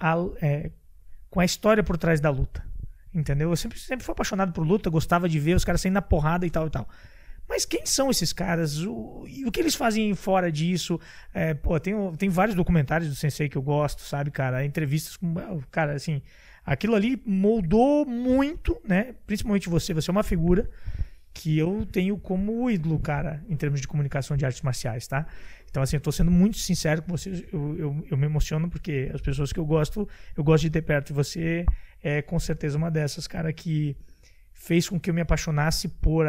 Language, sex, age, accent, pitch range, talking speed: Portuguese, male, 20-39, Brazilian, 140-180 Hz, 210 wpm